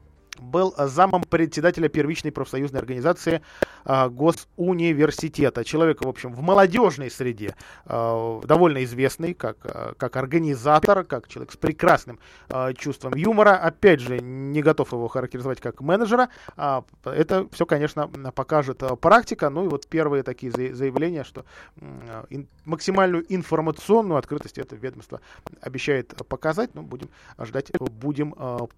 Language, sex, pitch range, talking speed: Russian, male, 130-165 Hz, 135 wpm